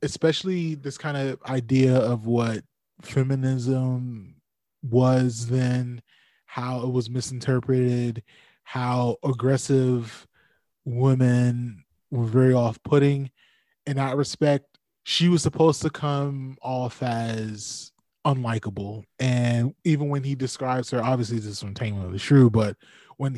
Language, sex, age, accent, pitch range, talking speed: English, male, 20-39, American, 120-135 Hz, 120 wpm